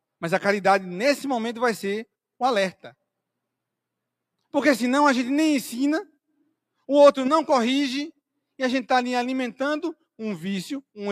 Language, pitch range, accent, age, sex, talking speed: Portuguese, 215-275 Hz, Brazilian, 40-59, male, 150 wpm